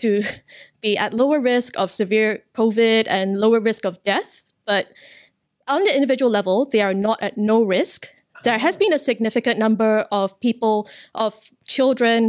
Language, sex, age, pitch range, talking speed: English, female, 20-39, 205-240 Hz, 165 wpm